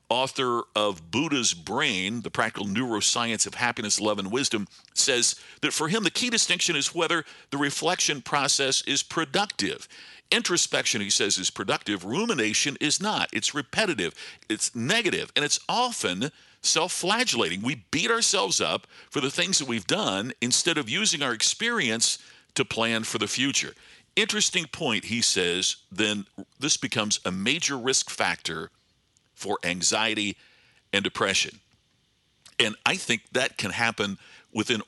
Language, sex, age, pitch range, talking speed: English, male, 50-69, 105-150 Hz, 145 wpm